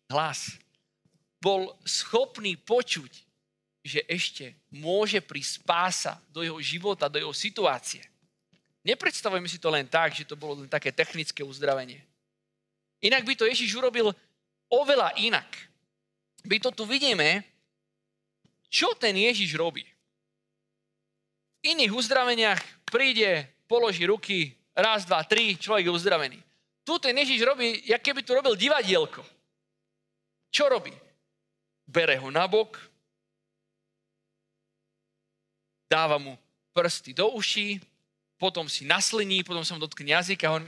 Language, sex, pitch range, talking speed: Slovak, male, 140-220 Hz, 125 wpm